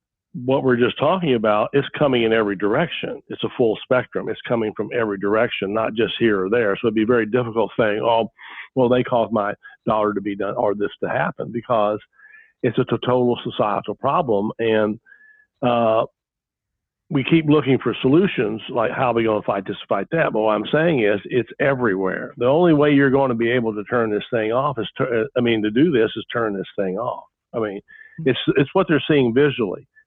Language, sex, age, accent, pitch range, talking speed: English, male, 50-69, American, 110-140 Hz, 215 wpm